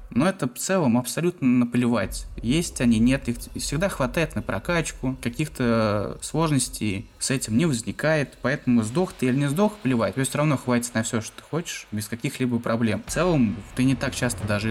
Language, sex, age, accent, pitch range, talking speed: Russian, male, 20-39, native, 110-135 Hz, 190 wpm